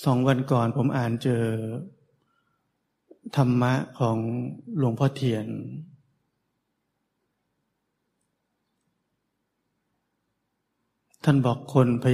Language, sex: Thai, male